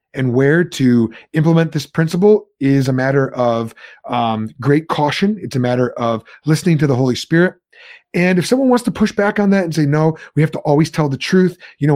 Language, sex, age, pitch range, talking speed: English, male, 30-49, 130-165 Hz, 215 wpm